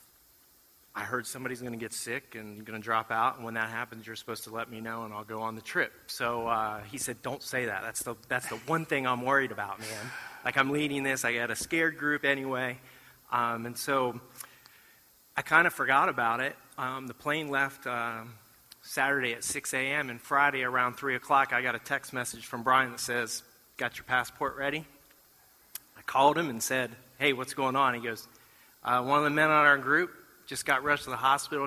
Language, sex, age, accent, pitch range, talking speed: English, male, 30-49, American, 120-140 Hz, 220 wpm